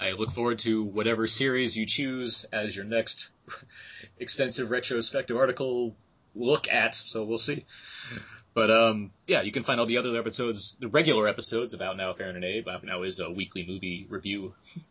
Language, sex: English, male